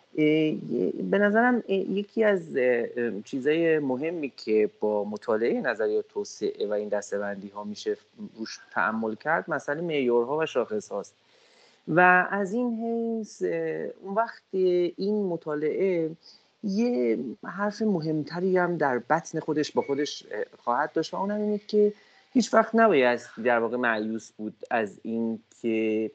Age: 30-49